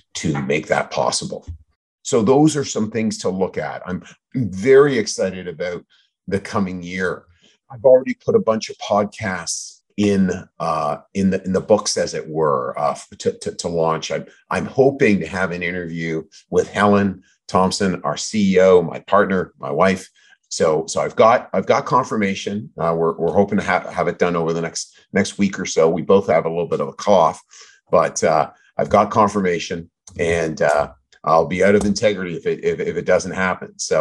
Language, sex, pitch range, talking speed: English, male, 85-115 Hz, 190 wpm